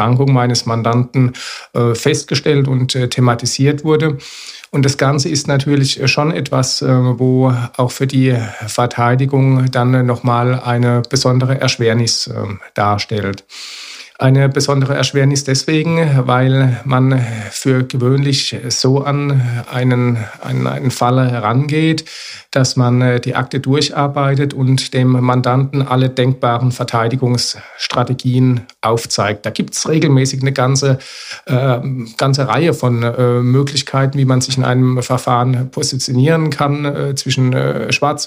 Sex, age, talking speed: male, 50-69, 120 wpm